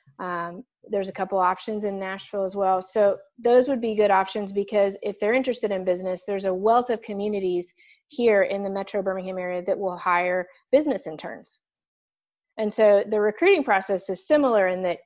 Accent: American